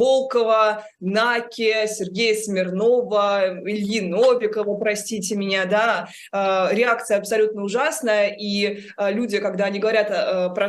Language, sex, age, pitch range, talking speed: Russian, female, 20-39, 195-220 Hz, 100 wpm